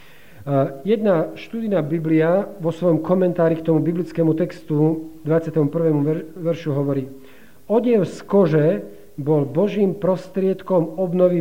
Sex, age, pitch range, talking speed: male, 50-69, 150-175 Hz, 105 wpm